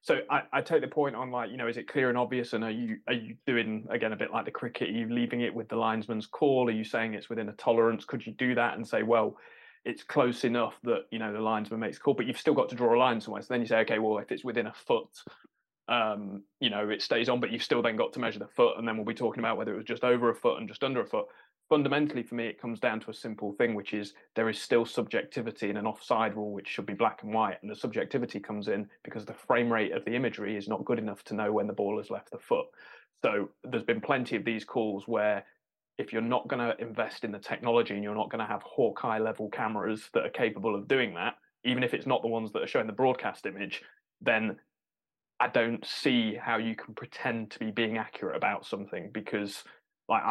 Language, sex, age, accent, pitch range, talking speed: English, male, 20-39, British, 110-125 Hz, 265 wpm